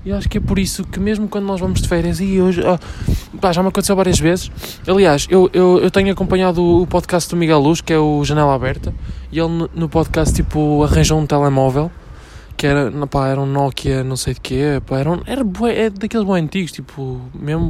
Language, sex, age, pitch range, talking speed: Portuguese, male, 20-39, 130-175 Hz, 225 wpm